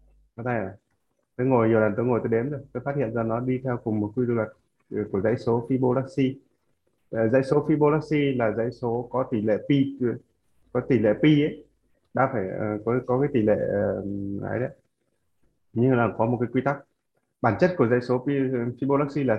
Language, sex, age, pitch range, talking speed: Vietnamese, male, 20-39, 110-130 Hz, 200 wpm